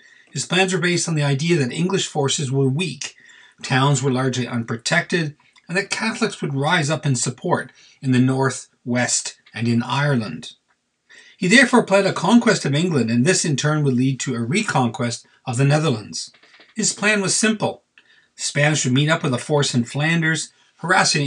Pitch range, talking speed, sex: 130-180 Hz, 185 wpm, male